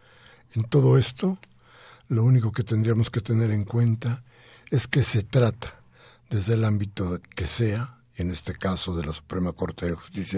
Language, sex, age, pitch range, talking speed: Spanish, male, 60-79, 110-140 Hz, 170 wpm